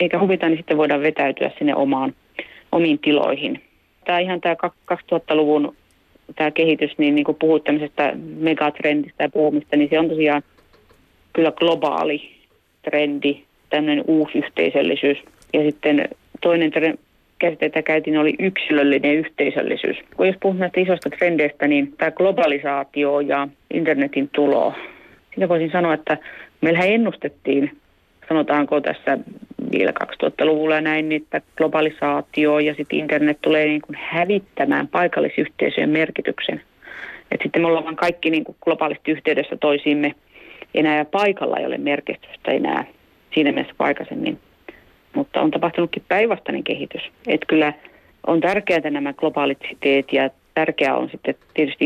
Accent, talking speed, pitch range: native, 130 wpm, 150-165 Hz